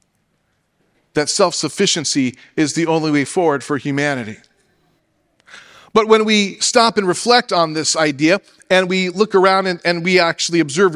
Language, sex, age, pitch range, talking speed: English, male, 40-59, 155-205 Hz, 150 wpm